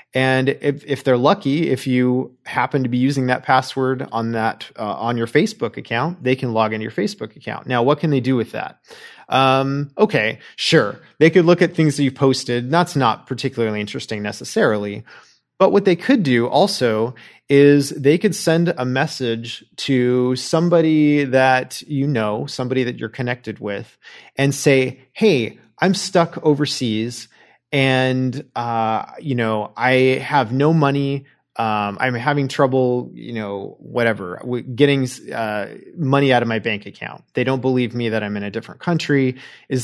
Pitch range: 125-160 Hz